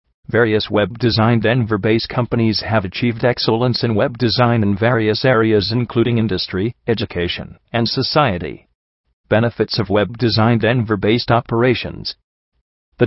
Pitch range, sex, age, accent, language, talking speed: 100-125 Hz, male, 40-59, American, English, 110 wpm